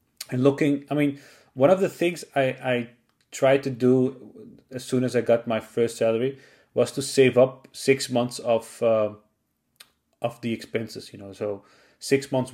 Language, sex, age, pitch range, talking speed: English, male, 30-49, 110-130 Hz, 175 wpm